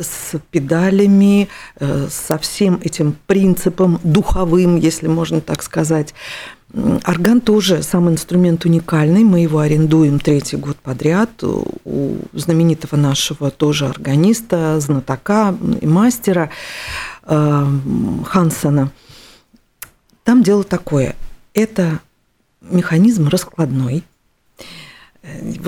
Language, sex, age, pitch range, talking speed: Russian, female, 50-69, 150-195 Hz, 90 wpm